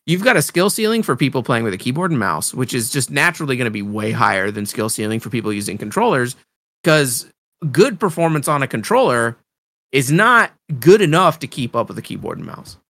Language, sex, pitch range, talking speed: English, male, 115-170 Hz, 220 wpm